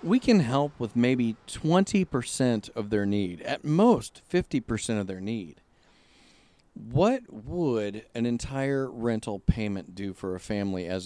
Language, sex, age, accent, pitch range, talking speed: English, male, 50-69, American, 110-185 Hz, 140 wpm